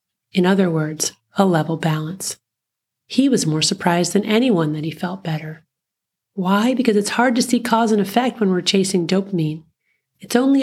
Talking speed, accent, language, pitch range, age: 175 wpm, American, English, 170-215 Hz, 40-59